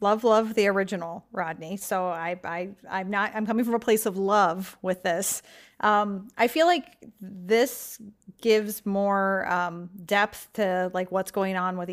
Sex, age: female, 30-49